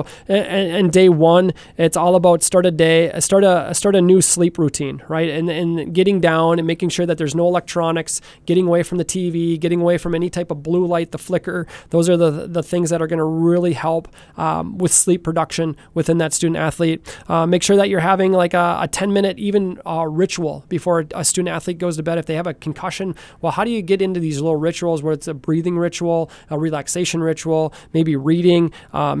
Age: 20-39